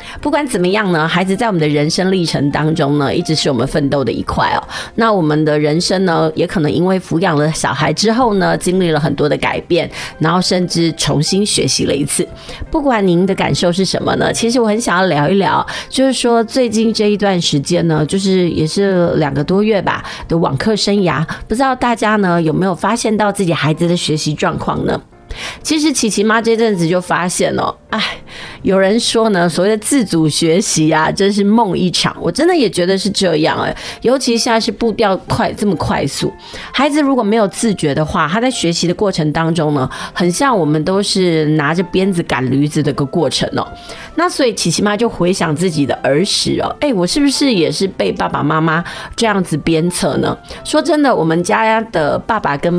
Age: 30-49